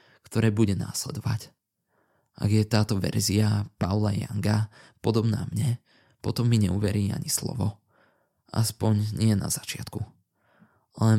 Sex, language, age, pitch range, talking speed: male, Slovak, 20-39, 100-115 Hz, 115 wpm